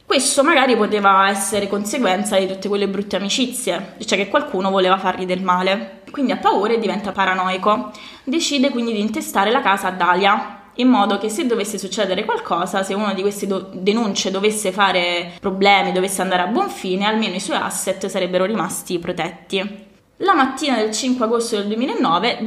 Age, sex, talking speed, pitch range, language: 20-39, female, 175 wpm, 190-225 Hz, Italian